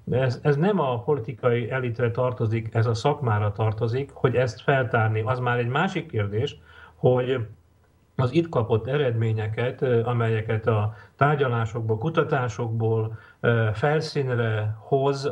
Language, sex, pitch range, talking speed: Slovak, male, 115-140 Hz, 120 wpm